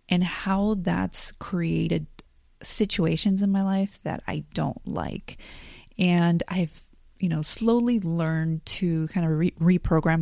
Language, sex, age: English, female, 30-49